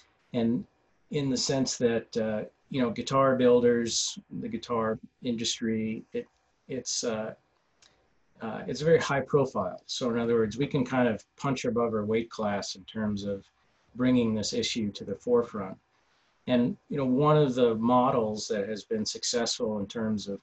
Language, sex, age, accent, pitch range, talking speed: English, male, 40-59, American, 110-135 Hz, 170 wpm